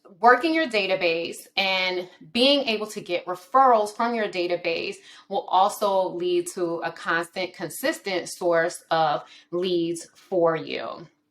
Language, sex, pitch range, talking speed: English, female, 185-260 Hz, 125 wpm